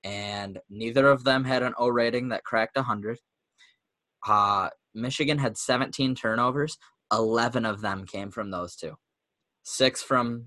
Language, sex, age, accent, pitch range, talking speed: English, male, 10-29, American, 110-130 Hz, 145 wpm